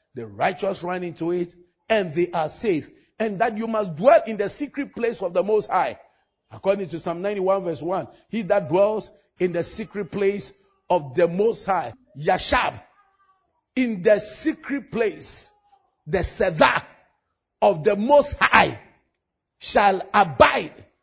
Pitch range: 180-265 Hz